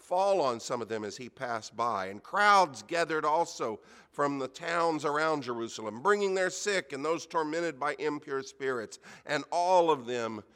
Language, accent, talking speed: English, American, 175 wpm